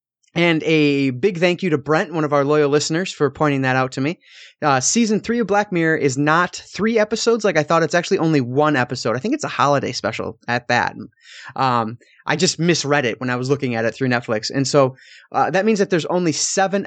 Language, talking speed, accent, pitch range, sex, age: English, 235 wpm, American, 130-170 Hz, male, 20-39